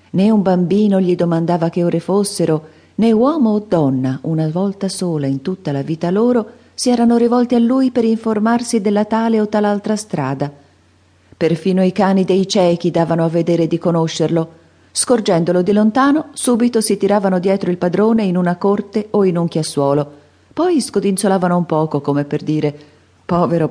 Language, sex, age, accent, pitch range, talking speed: Italian, female, 40-59, native, 140-200 Hz, 165 wpm